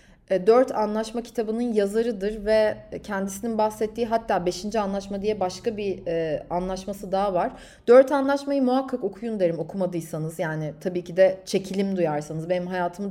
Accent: native